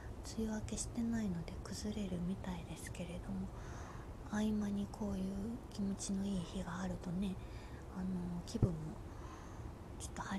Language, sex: Japanese, female